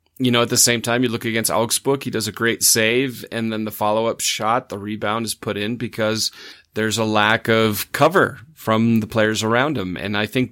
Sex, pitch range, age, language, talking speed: male, 105-125 Hz, 30-49, English, 230 wpm